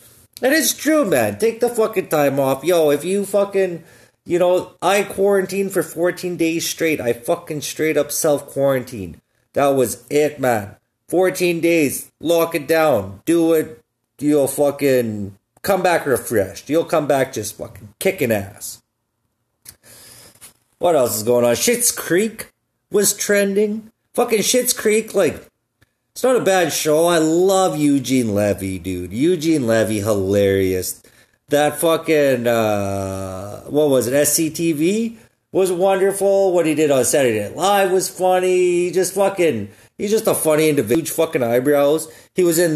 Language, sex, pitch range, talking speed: English, male, 120-185 Hz, 150 wpm